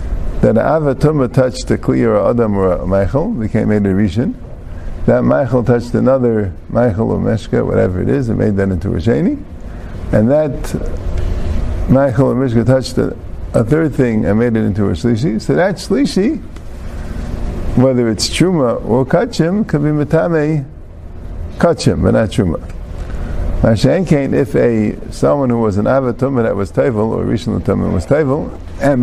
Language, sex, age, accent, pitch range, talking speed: English, male, 50-69, American, 90-140 Hz, 155 wpm